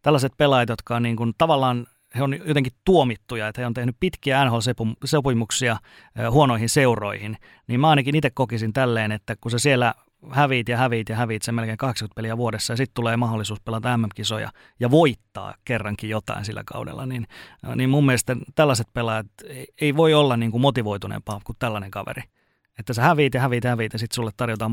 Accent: native